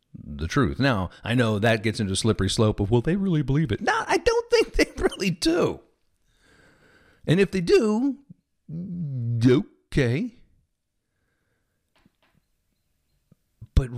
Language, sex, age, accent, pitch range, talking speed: English, male, 50-69, American, 95-155 Hz, 130 wpm